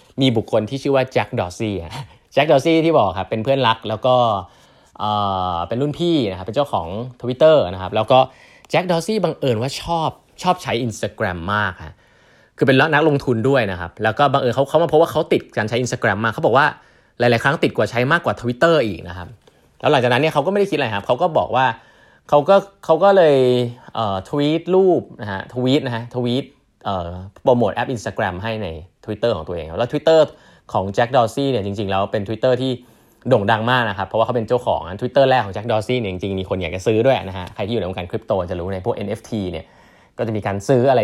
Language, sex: Thai, male